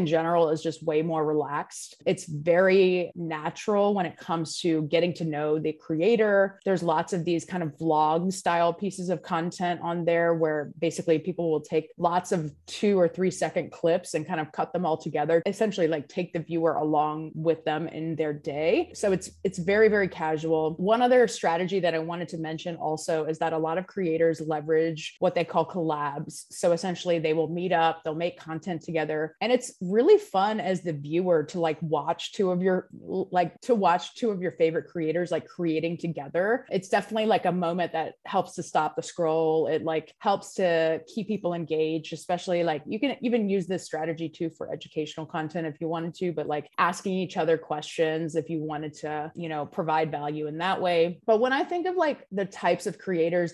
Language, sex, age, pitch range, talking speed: English, female, 20-39, 160-185 Hz, 205 wpm